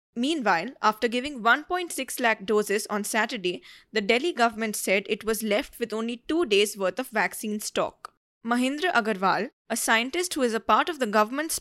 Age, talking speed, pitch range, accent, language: 20-39, 175 wpm, 215-265 Hz, Indian, English